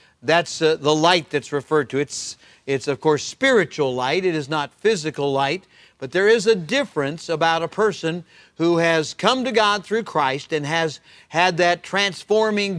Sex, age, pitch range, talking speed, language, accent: male, 50-69, 160-205 Hz, 180 wpm, English, American